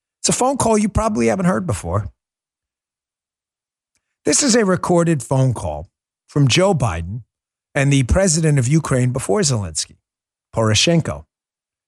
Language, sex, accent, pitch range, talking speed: English, male, American, 110-165 Hz, 130 wpm